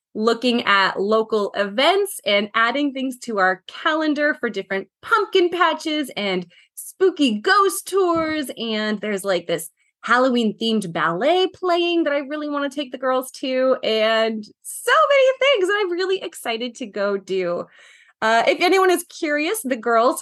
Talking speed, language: 155 wpm, English